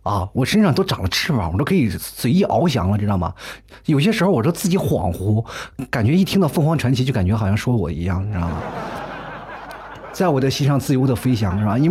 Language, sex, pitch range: Chinese, male, 100-150 Hz